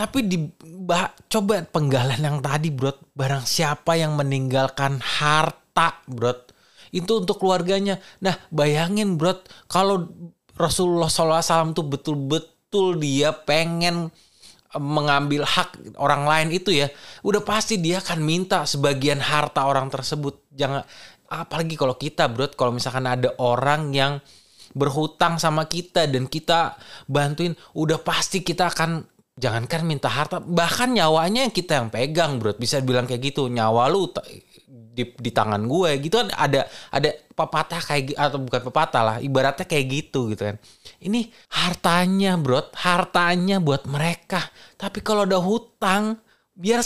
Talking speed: 140 wpm